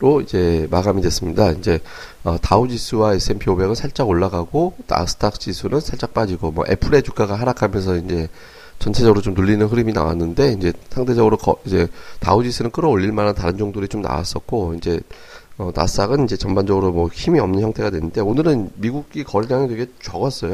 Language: Korean